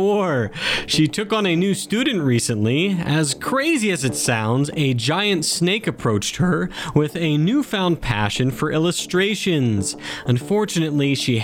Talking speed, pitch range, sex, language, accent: 130 wpm, 130-200 Hz, male, English, American